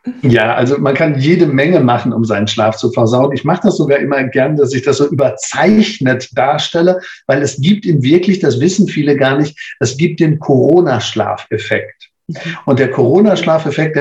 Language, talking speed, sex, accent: German, 175 wpm, male, German